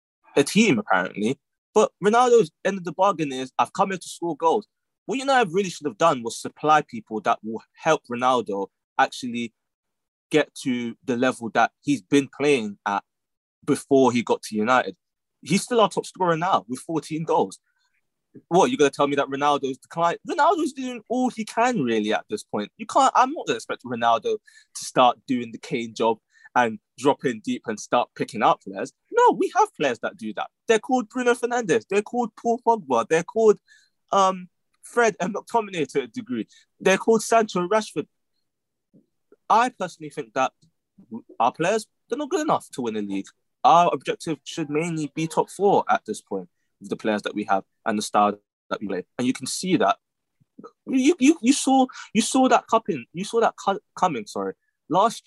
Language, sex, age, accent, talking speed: English, male, 20-39, British, 195 wpm